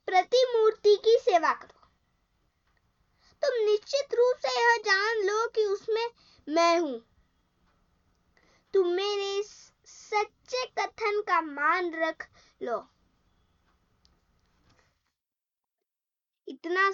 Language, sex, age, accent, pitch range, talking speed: Hindi, female, 20-39, native, 280-395 Hz, 85 wpm